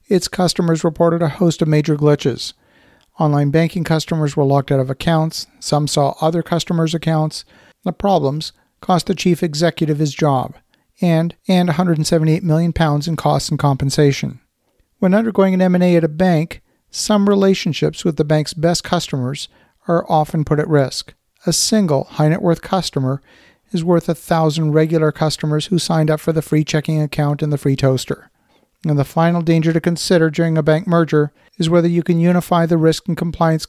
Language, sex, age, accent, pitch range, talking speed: English, male, 50-69, American, 150-175 Hz, 175 wpm